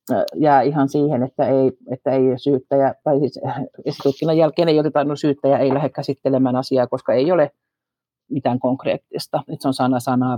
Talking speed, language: 160 wpm, Finnish